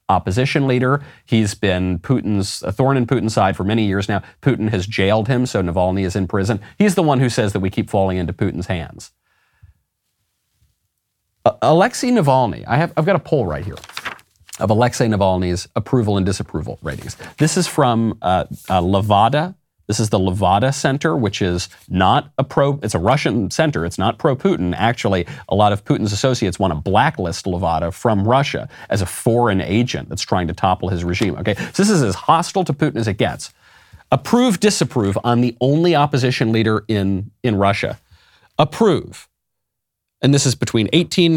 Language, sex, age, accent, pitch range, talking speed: English, male, 40-59, American, 95-140 Hz, 180 wpm